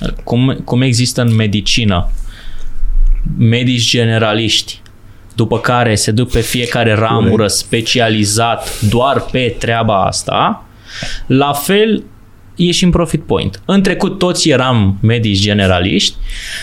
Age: 20-39